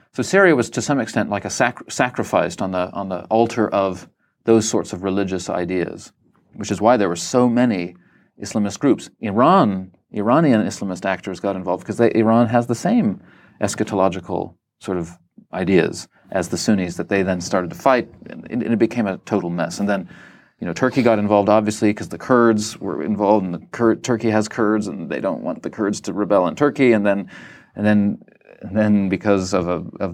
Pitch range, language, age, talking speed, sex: 100-120 Hz, English, 40-59, 200 wpm, male